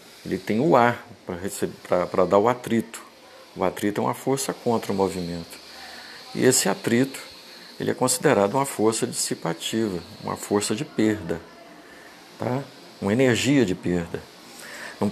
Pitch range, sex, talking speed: 95-125 Hz, male, 140 wpm